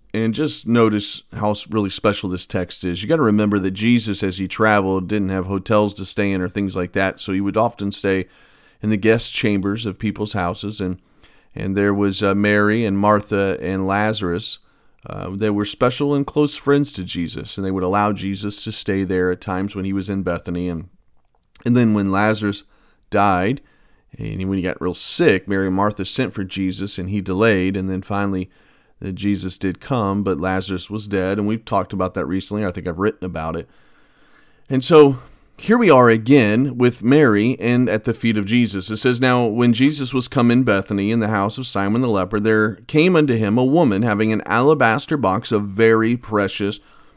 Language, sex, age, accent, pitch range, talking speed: English, male, 40-59, American, 95-115 Hz, 205 wpm